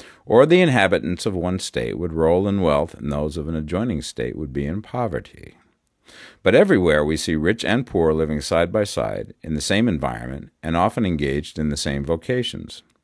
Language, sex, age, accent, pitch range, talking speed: English, male, 50-69, American, 80-110 Hz, 195 wpm